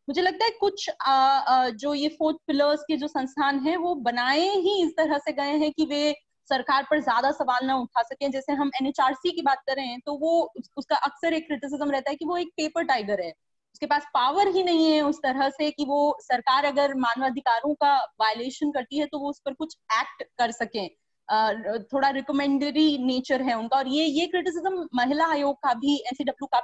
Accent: native